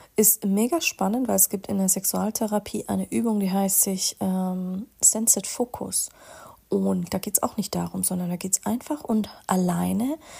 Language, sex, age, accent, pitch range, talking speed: German, female, 30-49, German, 190-230 Hz, 180 wpm